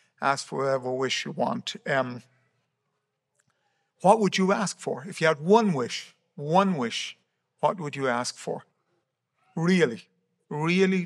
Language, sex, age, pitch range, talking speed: English, male, 60-79, 135-175 Hz, 140 wpm